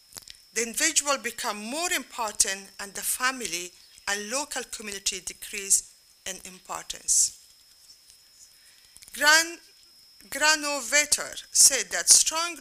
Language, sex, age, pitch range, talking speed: German, female, 50-69, 200-280 Hz, 90 wpm